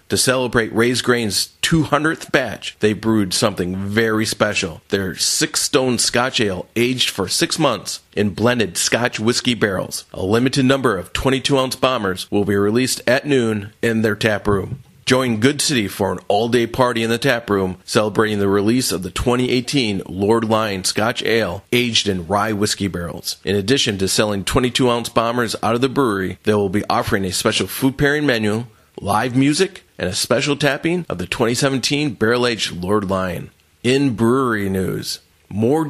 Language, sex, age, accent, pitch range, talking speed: English, male, 40-59, American, 100-130 Hz, 180 wpm